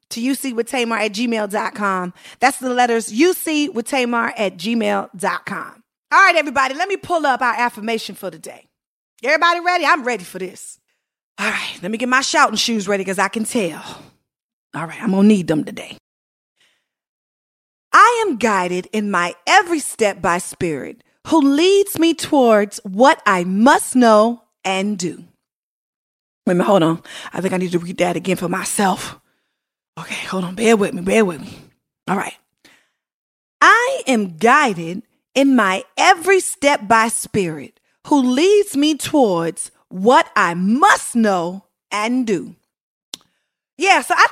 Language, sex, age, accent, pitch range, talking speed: English, female, 30-49, American, 205-295 Hz, 160 wpm